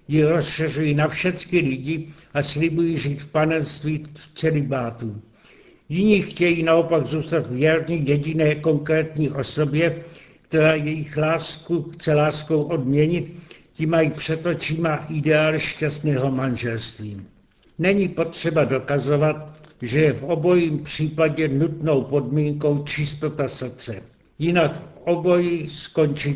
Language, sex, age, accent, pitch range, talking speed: Czech, male, 70-89, native, 145-165 Hz, 105 wpm